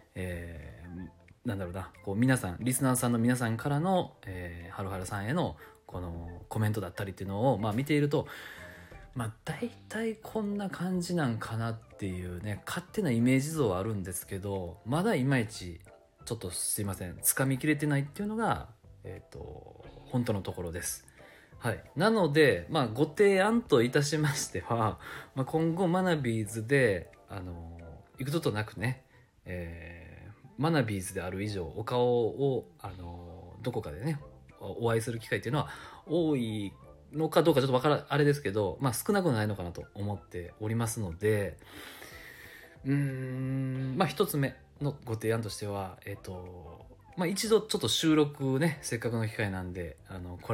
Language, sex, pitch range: Japanese, male, 95-140 Hz